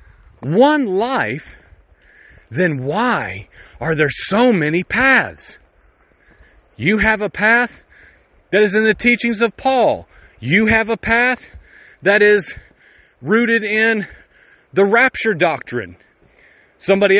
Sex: male